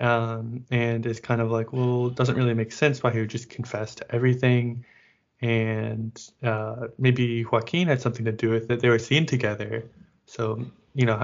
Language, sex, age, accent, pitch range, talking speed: English, male, 20-39, American, 115-135 Hz, 190 wpm